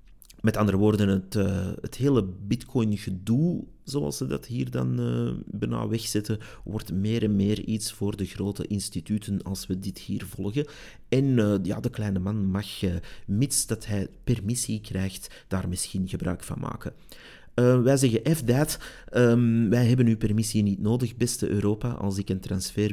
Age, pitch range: 30-49, 95-120 Hz